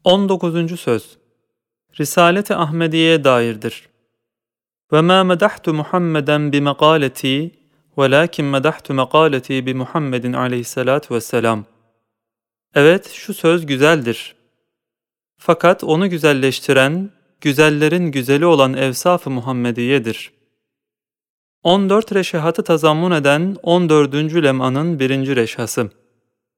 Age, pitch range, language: 30-49, 130-170 Hz, Turkish